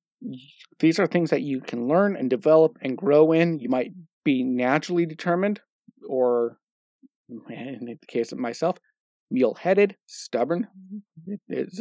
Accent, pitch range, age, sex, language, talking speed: American, 125-175 Hz, 40-59, male, English, 130 wpm